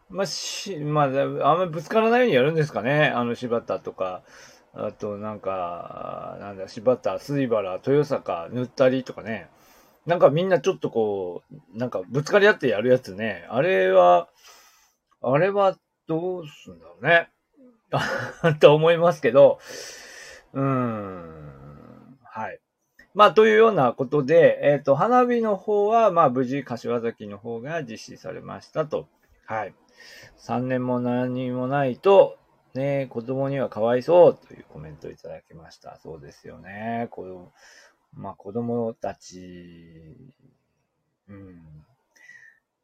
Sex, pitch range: male, 120-195 Hz